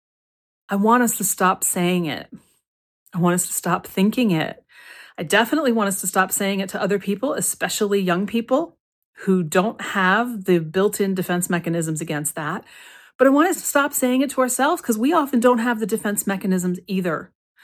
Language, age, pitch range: English, 40-59, 190-245 Hz